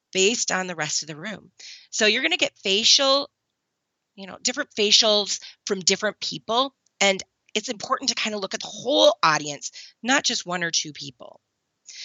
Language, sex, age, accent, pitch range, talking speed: English, female, 30-49, American, 175-240 Hz, 185 wpm